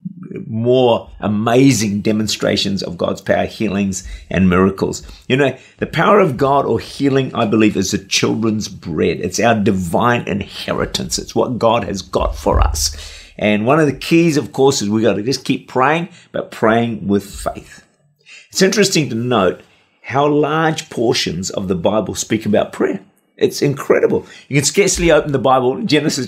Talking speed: 170 wpm